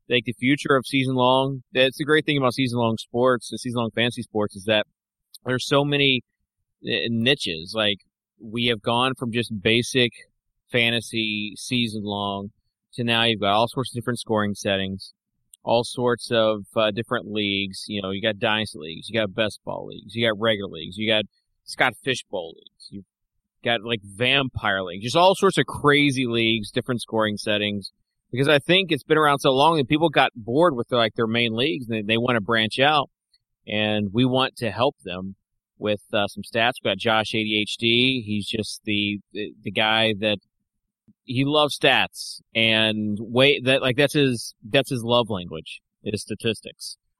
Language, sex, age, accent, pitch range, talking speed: English, male, 30-49, American, 105-125 Hz, 190 wpm